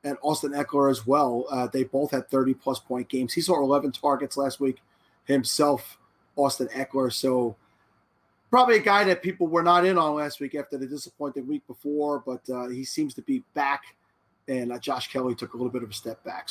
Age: 30-49